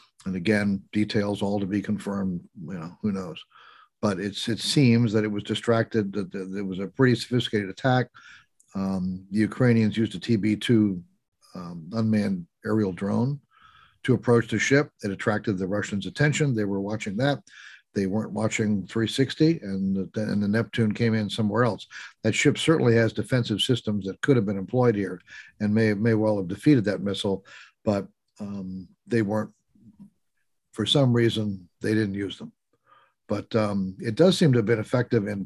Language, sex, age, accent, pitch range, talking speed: English, male, 50-69, American, 100-115 Hz, 175 wpm